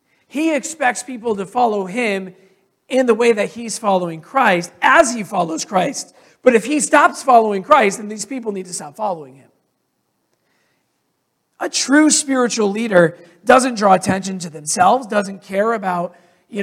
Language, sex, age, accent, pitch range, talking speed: English, male, 40-59, American, 185-235 Hz, 160 wpm